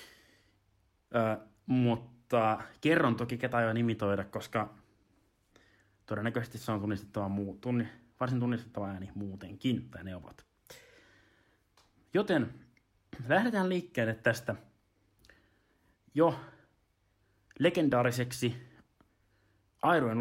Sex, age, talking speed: male, 30-49, 85 wpm